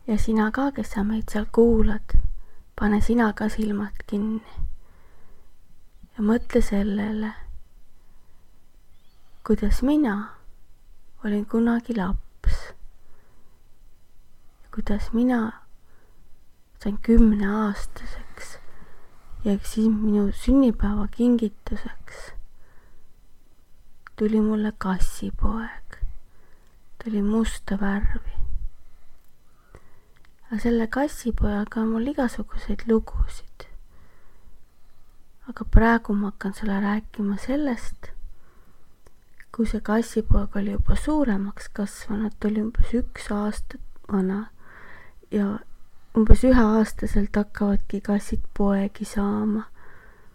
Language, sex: English, female